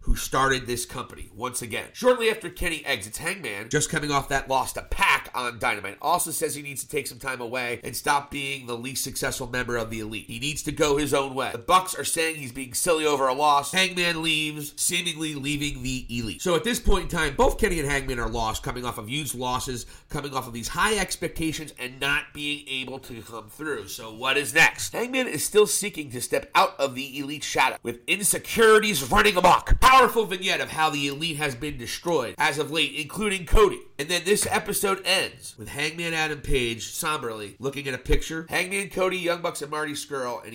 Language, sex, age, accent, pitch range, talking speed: English, male, 40-59, American, 130-185 Hz, 220 wpm